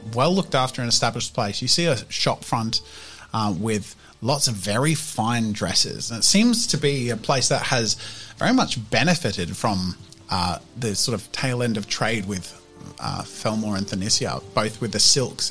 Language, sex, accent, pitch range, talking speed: English, male, Australian, 100-135 Hz, 185 wpm